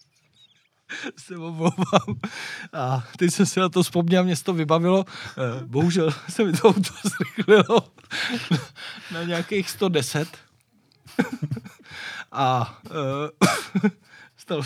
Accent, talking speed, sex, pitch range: native, 100 wpm, male, 135-175 Hz